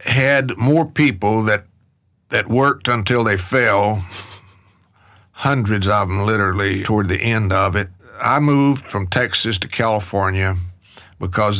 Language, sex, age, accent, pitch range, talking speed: English, male, 60-79, American, 100-135 Hz, 130 wpm